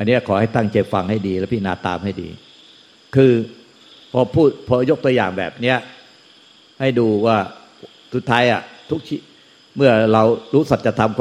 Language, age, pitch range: Thai, 60-79, 110-135 Hz